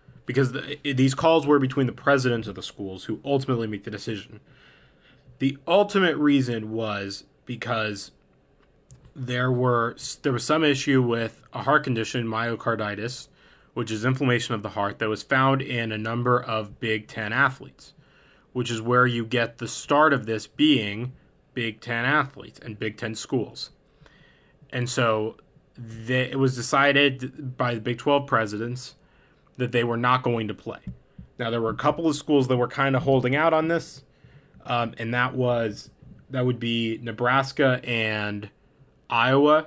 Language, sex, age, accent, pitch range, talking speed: English, male, 20-39, American, 115-135 Hz, 160 wpm